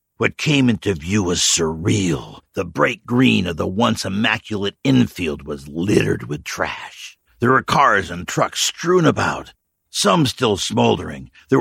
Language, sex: English, male